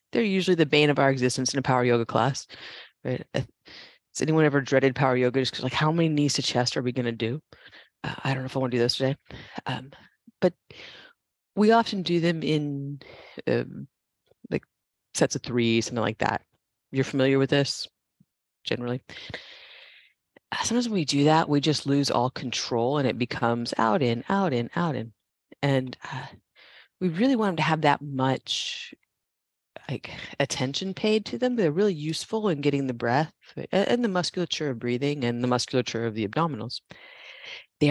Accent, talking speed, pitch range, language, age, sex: American, 180 wpm, 120-150 Hz, English, 30-49, female